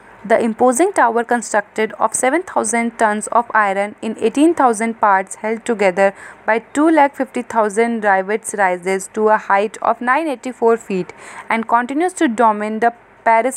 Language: English